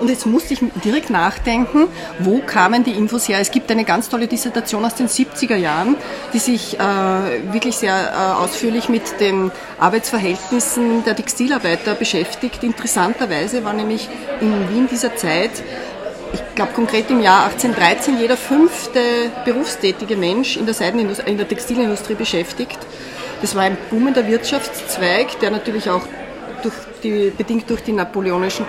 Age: 30-49